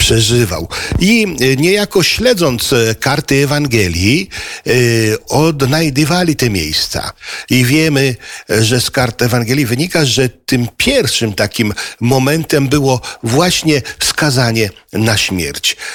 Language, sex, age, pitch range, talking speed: Polish, male, 50-69, 110-140 Hz, 95 wpm